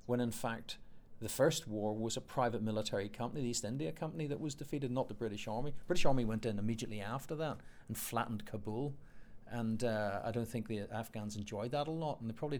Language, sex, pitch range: English, male, 110-135 Hz